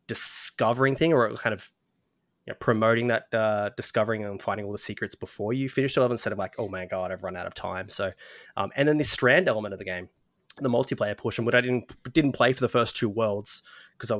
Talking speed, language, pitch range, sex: 240 wpm, English, 105-120 Hz, male